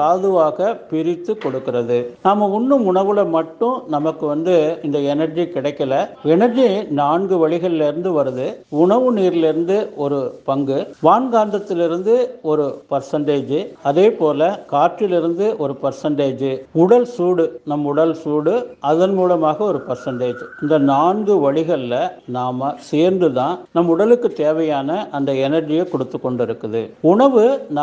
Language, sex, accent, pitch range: Tamil, male, native, 145-185 Hz